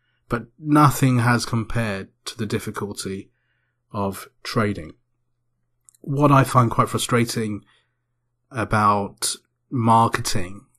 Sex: male